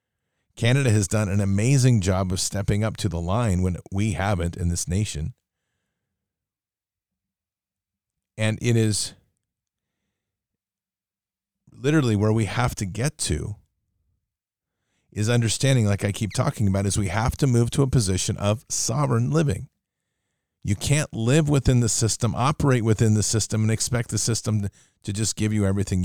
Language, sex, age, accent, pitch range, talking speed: English, male, 40-59, American, 100-125 Hz, 150 wpm